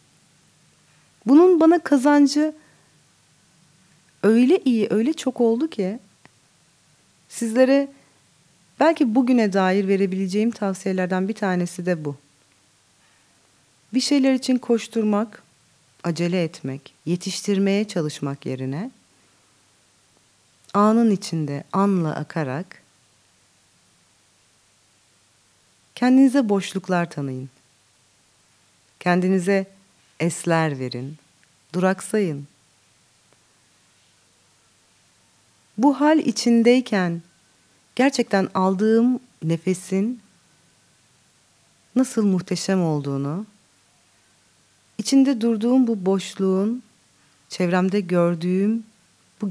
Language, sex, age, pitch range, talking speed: Turkish, female, 40-59, 145-230 Hz, 70 wpm